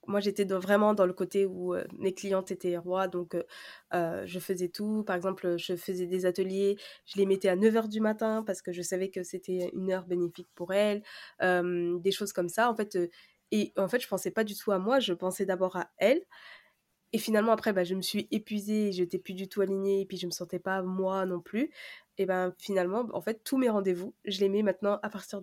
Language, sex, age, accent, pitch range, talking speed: French, female, 20-39, French, 185-215 Hz, 250 wpm